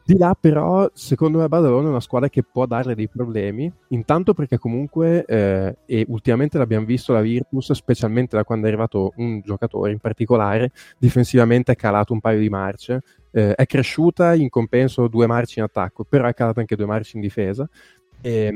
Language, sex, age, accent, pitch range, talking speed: Italian, male, 20-39, native, 105-125 Hz, 190 wpm